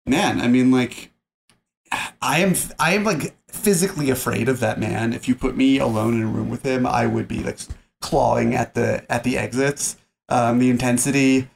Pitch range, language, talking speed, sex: 110-130 Hz, English, 185 wpm, male